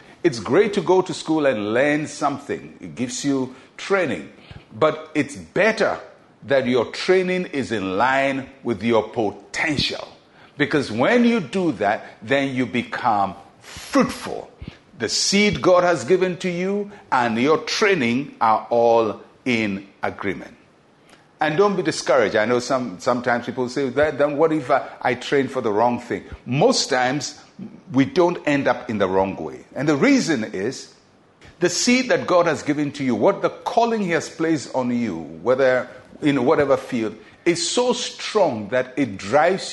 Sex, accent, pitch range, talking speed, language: male, Nigerian, 125-180 Hz, 165 wpm, English